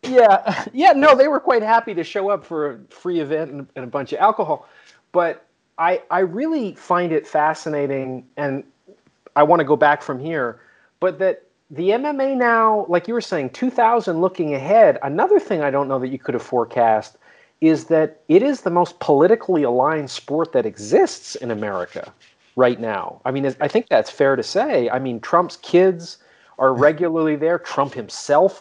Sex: male